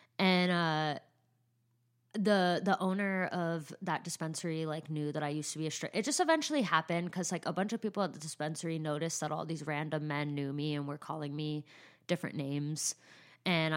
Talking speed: 195 wpm